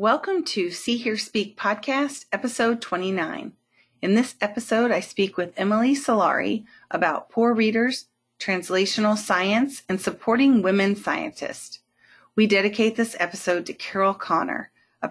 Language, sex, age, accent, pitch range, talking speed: English, female, 30-49, American, 185-225 Hz, 130 wpm